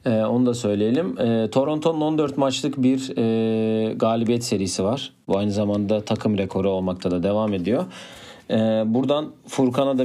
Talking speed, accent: 155 wpm, native